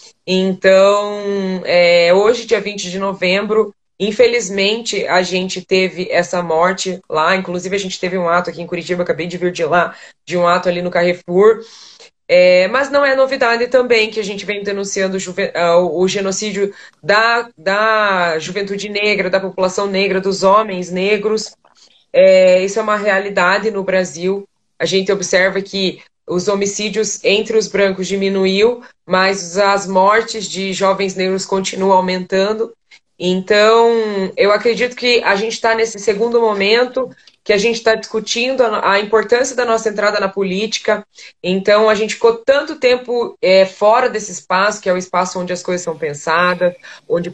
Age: 20-39